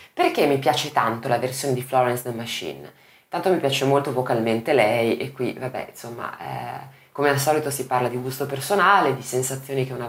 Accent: native